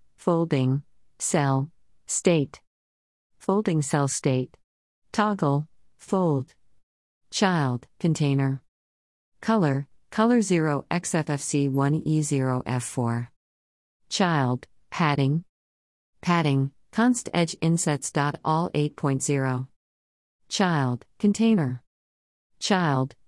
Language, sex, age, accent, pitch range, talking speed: English, female, 50-69, American, 110-165 Hz, 55 wpm